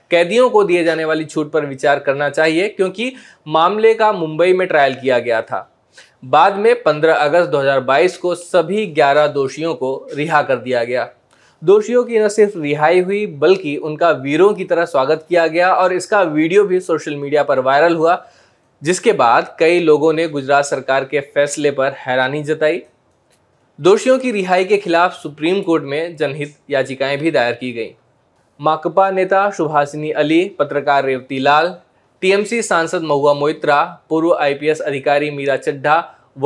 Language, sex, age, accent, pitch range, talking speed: Hindi, male, 20-39, native, 145-185 Hz, 150 wpm